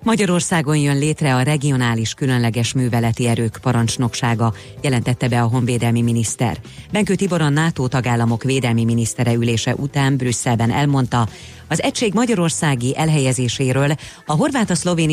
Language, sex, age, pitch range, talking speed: Hungarian, female, 30-49, 120-150 Hz, 125 wpm